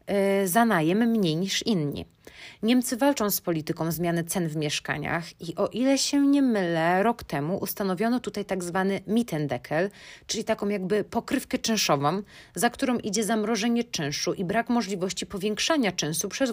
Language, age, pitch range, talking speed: Polish, 30-49, 175-230 Hz, 150 wpm